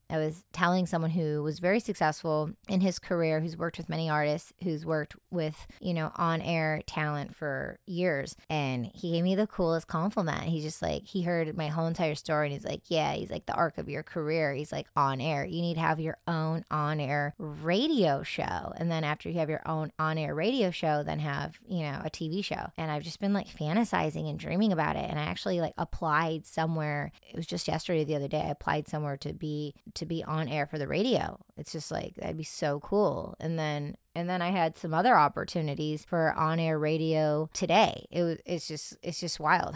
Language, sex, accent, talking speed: English, female, American, 215 wpm